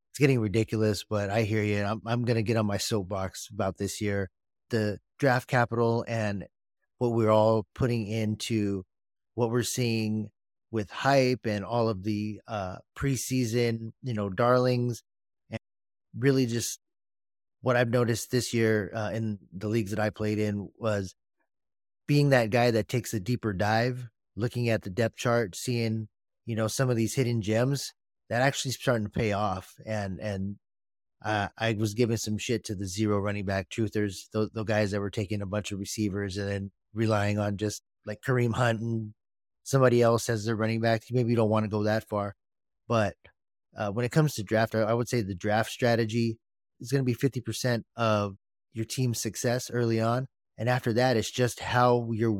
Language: English